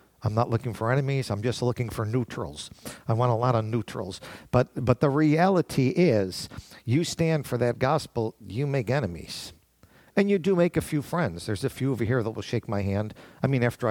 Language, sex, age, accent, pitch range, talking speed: English, male, 50-69, American, 115-150 Hz, 210 wpm